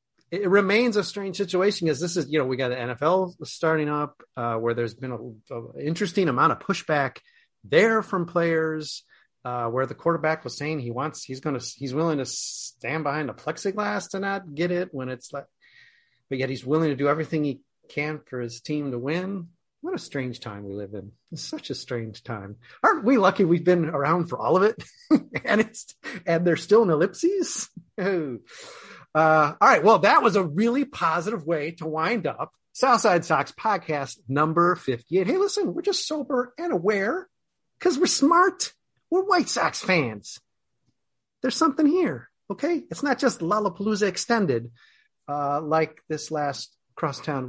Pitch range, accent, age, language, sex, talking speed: 135-220 Hz, American, 30-49, English, male, 180 wpm